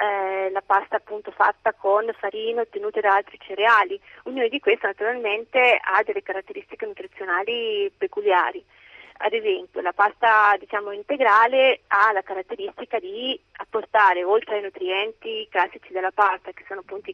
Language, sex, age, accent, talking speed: Italian, female, 30-49, native, 135 wpm